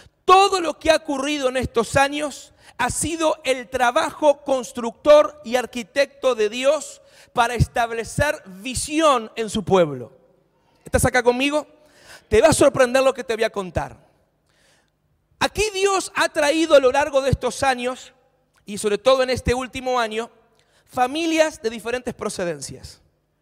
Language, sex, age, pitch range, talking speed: English, male, 40-59, 220-290 Hz, 145 wpm